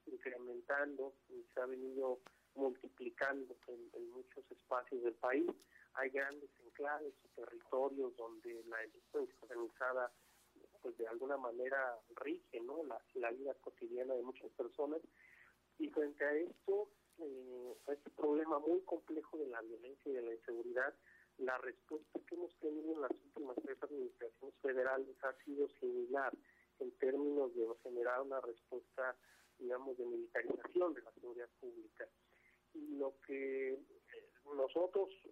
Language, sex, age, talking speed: Spanish, male, 40-59, 140 wpm